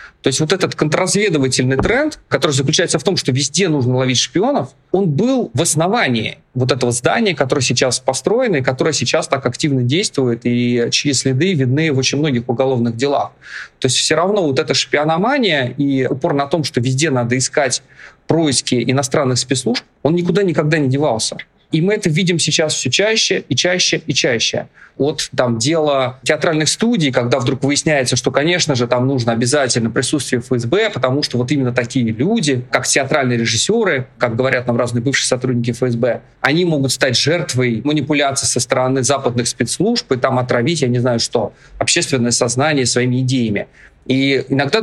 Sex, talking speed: male, 170 wpm